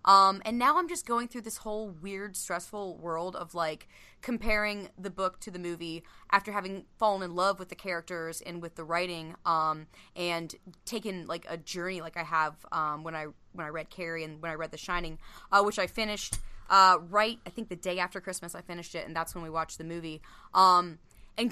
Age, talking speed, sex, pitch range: 20-39, 220 wpm, female, 170-205 Hz